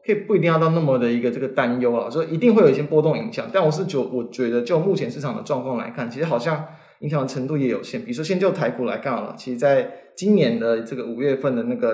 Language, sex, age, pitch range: Chinese, male, 20-39, 125-160 Hz